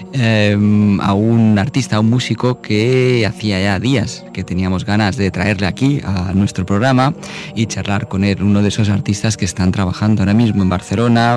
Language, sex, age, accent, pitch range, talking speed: English, male, 20-39, Spanish, 95-115 Hz, 180 wpm